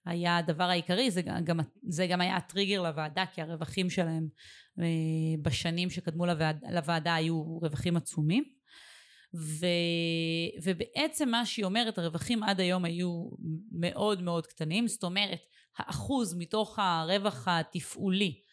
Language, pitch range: Hebrew, 170-210 Hz